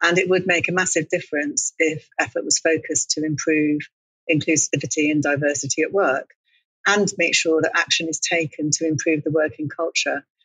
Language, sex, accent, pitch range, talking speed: English, female, British, 150-175 Hz, 170 wpm